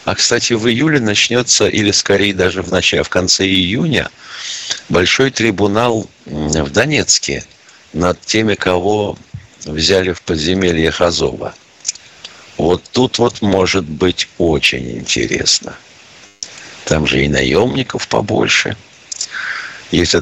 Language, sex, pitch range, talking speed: Russian, male, 80-115 Hz, 110 wpm